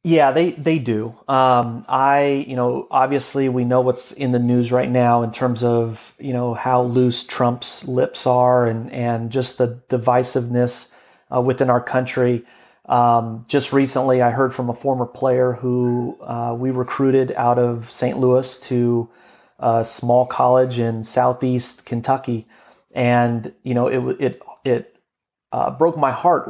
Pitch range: 120-135 Hz